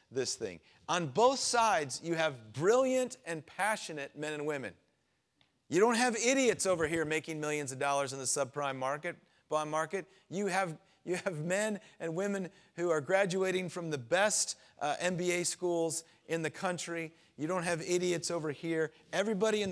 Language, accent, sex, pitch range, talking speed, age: English, American, male, 140-175 Hz, 170 wpm, 40-59